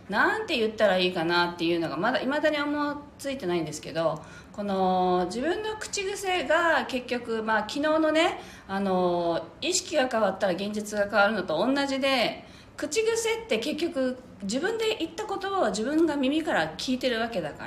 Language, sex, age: Japanese, female, 40-59